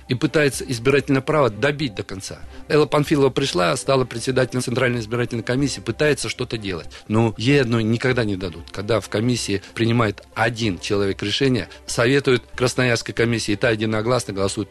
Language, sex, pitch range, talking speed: Russian, male, 100-135 Hz, 155 wpm